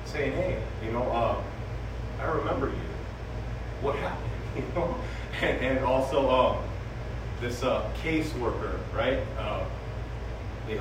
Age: 30-49